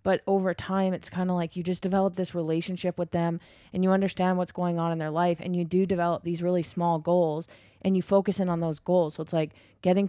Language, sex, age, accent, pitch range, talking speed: English, female, 20-39, American, 165-190 Hz, 250 wpm